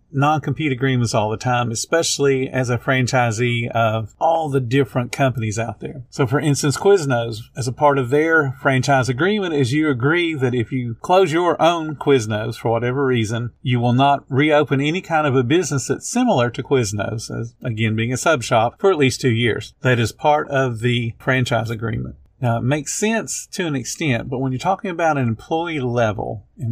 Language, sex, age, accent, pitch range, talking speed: English, male, 40-59, American, 115-140 Hz, 195 wpm